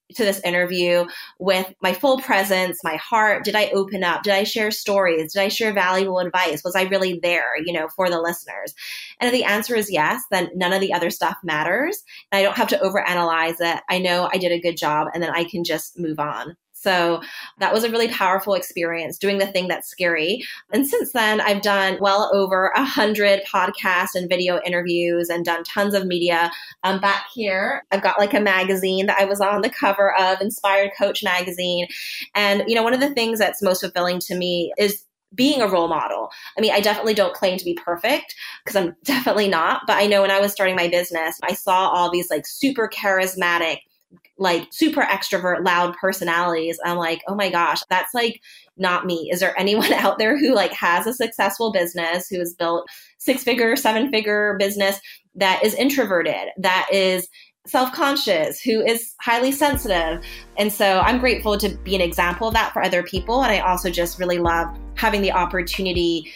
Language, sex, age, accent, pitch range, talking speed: English, female, 20-39, American, 175-205 Hz, 200 wpm